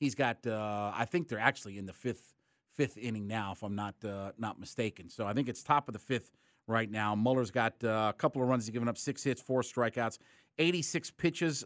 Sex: male